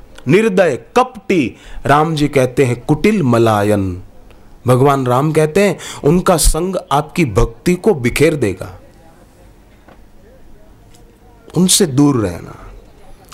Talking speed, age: 100 wpm, 40-59